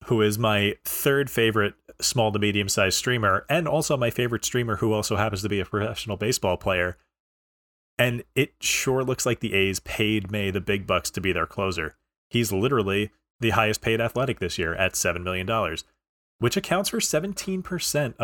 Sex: male